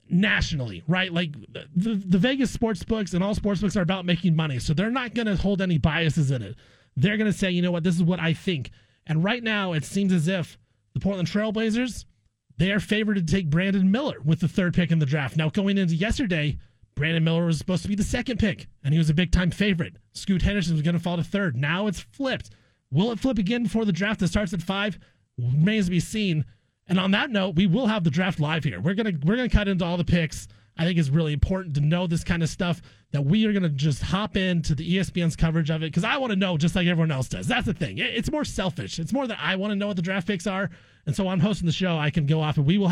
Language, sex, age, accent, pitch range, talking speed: English, male, 30-49, American, 155-200 Hz, 270 wpm